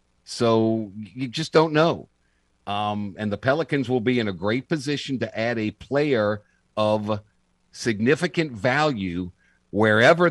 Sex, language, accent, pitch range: male, English, American, 100-140 Hz